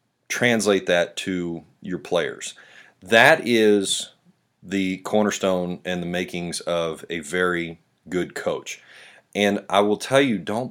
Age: 30-49